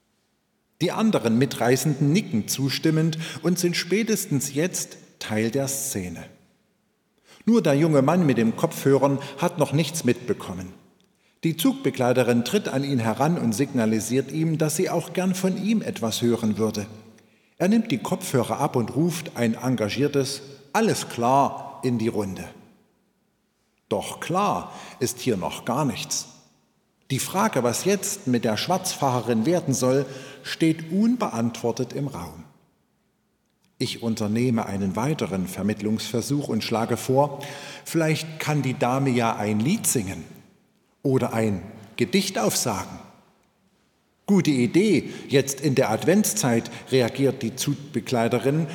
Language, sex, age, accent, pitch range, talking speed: German, male, 50-69, German, 115-165 Hz, 130 wpm